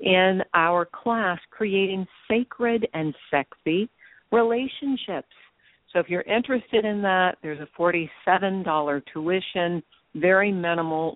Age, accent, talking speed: 50-69, American, 110 wpm